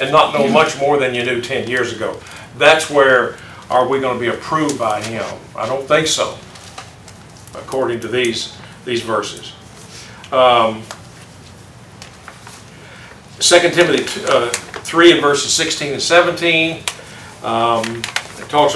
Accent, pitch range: American, 120-170 Hz